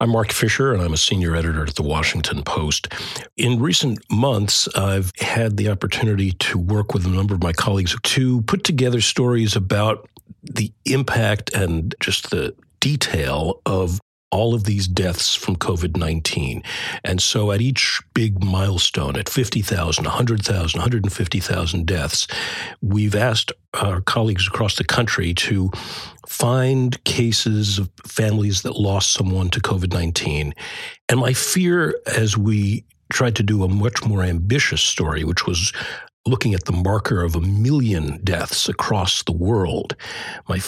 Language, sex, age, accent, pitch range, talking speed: English, male, 50-69, American, 95-115 Hz, 150 wpm